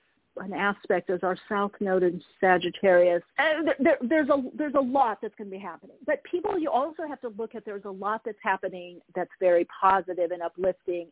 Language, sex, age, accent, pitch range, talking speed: English, female, 50-69, American, 185-235 Hz, 190 wpm